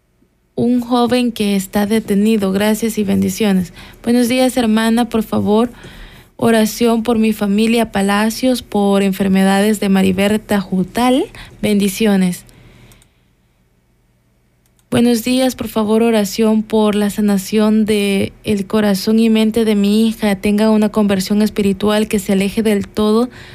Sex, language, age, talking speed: female, Spanish, 20-39, 125 wpm